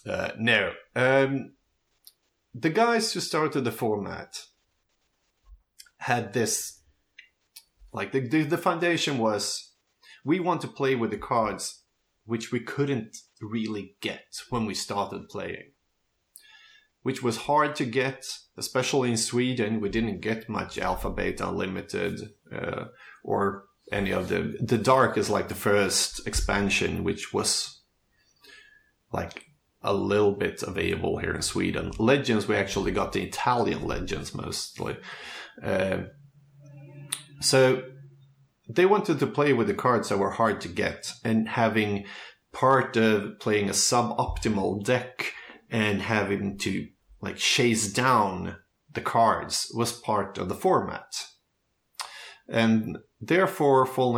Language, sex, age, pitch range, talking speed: English, male, 30-49, 105-140 Hz, 125 wpm